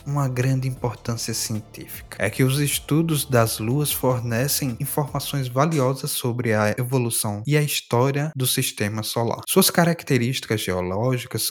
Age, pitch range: 20-39, 110-145 Hz